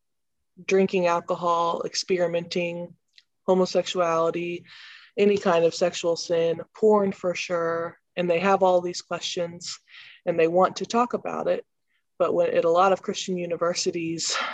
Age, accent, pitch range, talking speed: 20-39, American, 165-195 Hz, 130 wpm